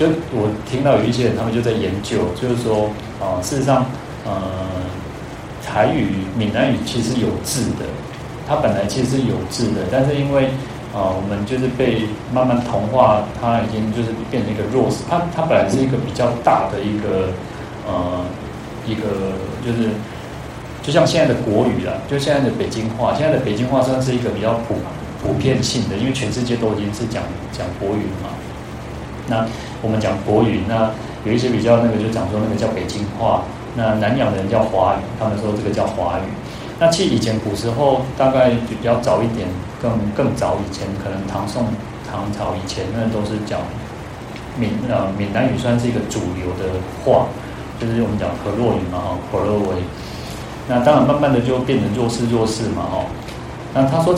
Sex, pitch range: male, 100-125 Hz